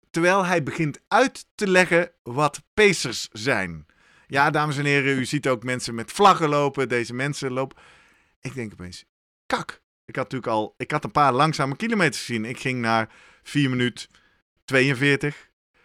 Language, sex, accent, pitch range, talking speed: Dutch, male, Dutch, 130-170 Hz, 165 wpm